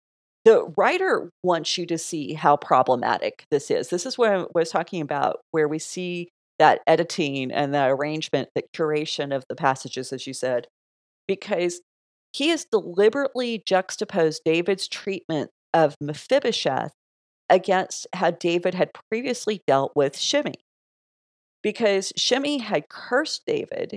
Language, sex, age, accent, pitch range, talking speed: English, female, 40-59, American, 170-245 Hz, 140 wpm